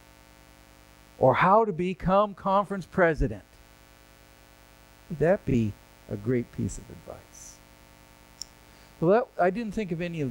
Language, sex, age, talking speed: French, male, 60-79, 120 wpm